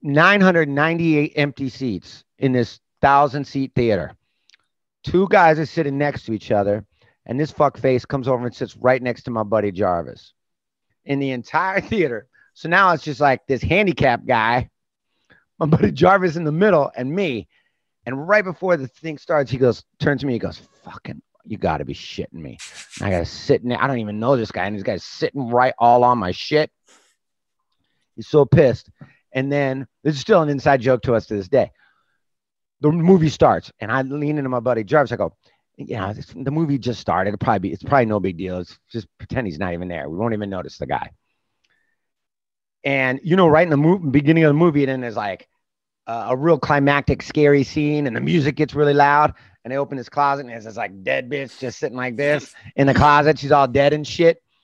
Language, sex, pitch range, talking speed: English, male, 120-150 Hz, 210 wpm